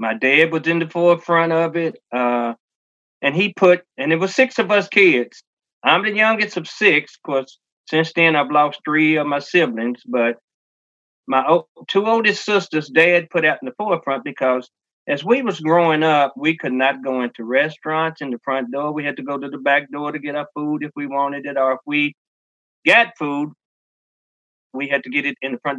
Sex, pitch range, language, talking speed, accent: male, 140-170 Hz, English, 205 wpm, American